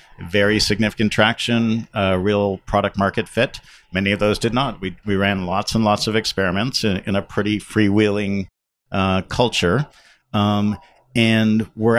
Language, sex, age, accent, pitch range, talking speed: English, male, 50-69, American, 95-110 Hz, 155 wpm